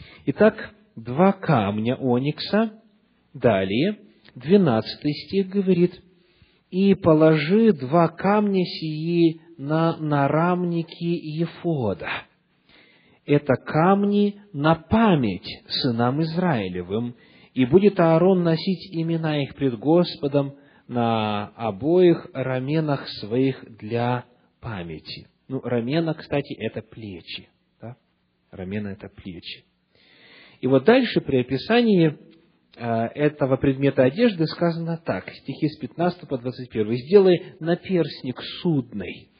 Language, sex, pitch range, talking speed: Russian, male, 130-180 Hz, 100 wpm